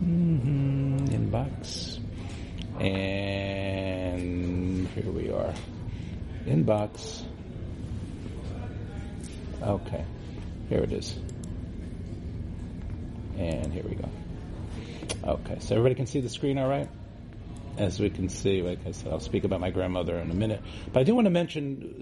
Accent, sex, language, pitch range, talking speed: American, male, English, 90-115 Hz, 125 wpm